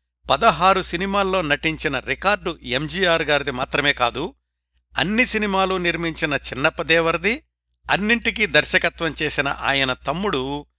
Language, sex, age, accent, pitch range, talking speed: Telugu, male, 60-79, native, 110-170 Hz, 95 wpm